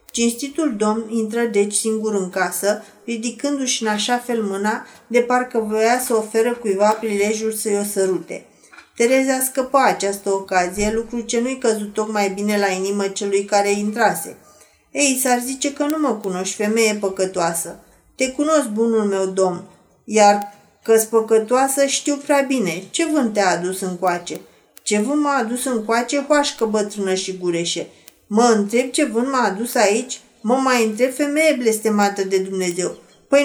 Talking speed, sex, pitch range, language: 155 wpm, female, 205-270 Hz, Romanian